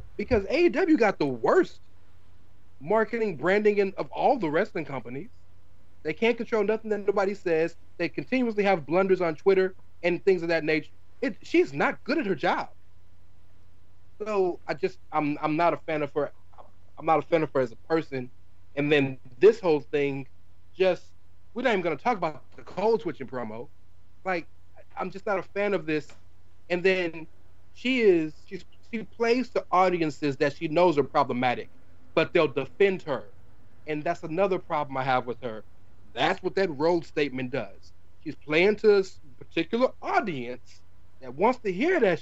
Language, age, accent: English, 30-49, American